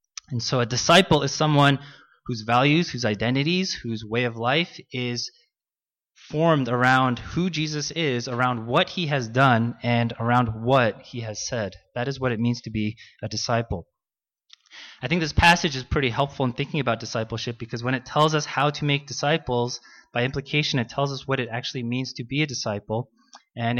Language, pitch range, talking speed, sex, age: English, 120-145 Hz, 185 wpm, male, 20-39